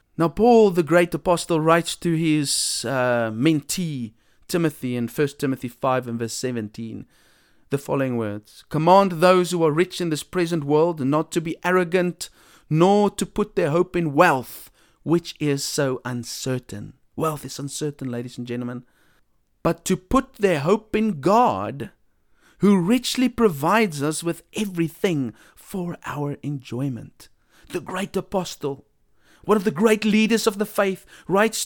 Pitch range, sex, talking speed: 140-200 Hz, male, 150 wpm